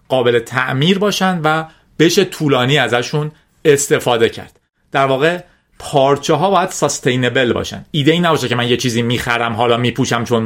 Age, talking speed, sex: 40-59, 155 wpm, male